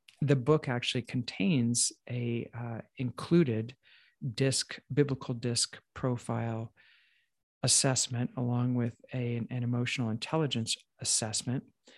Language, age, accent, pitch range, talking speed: English, 50-69, American, 120-140 Hz, 90 wpm